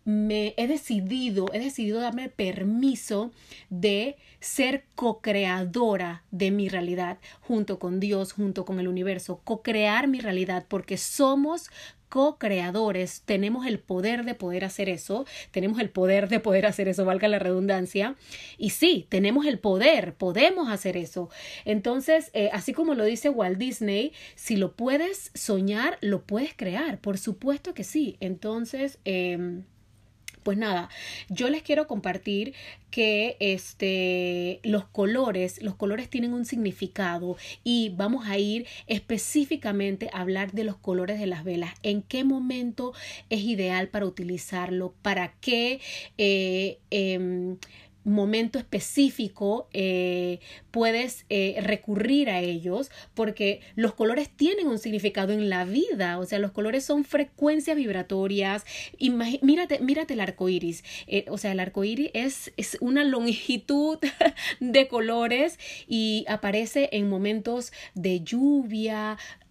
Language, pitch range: Spanish, 190-255 Hz